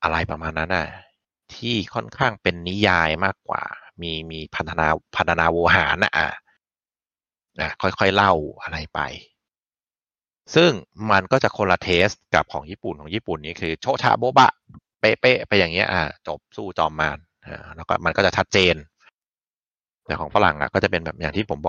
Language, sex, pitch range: Thai, male, 80-105 Hz